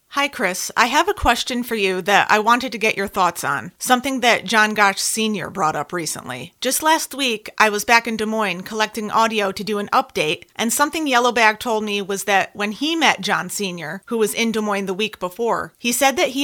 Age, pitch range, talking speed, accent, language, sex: 30-49, 200-245 Hz, 230 wpm, American, English, female